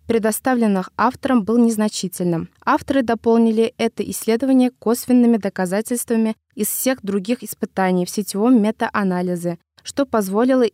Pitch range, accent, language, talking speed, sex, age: 200-245 Hz, native, Russian, 105 wpm, female, 20-39